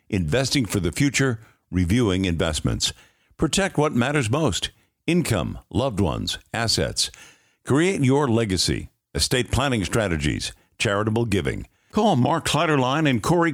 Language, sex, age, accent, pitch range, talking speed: English, male, 60-79, American, 105-140 Hz, 120 wpm